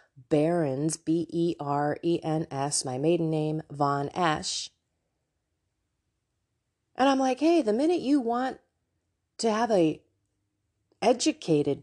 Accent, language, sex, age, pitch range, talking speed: American, English, female, 30-49, 130-215 Hz, 95 wpm